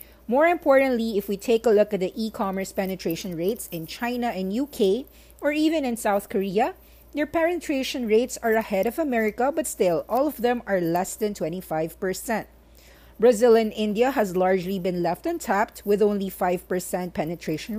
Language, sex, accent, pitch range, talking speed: English, female, Filipino, 185-245 Hz, 165 wpm